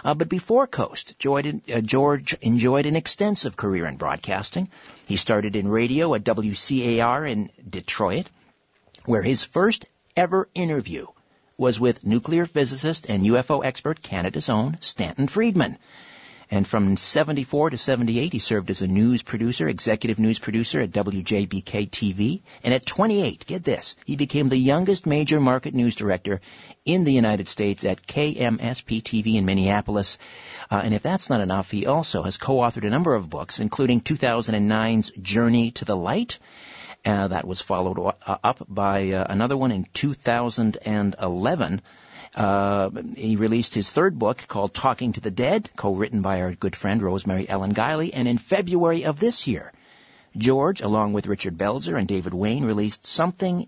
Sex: male